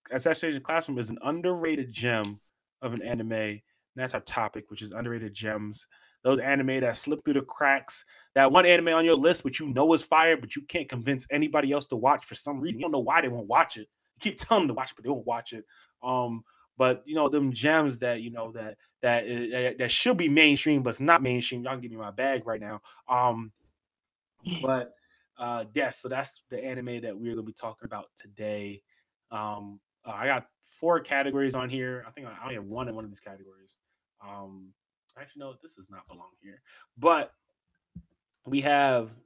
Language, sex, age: English, male, 20-39